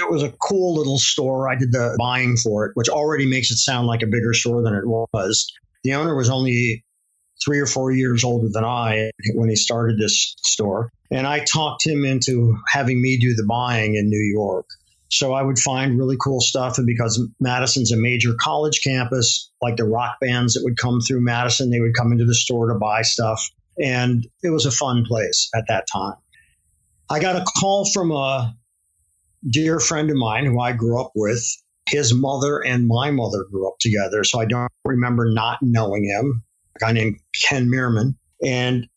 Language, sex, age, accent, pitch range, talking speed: English, male, 50-69, American, 115-135 Hz, 200 wpm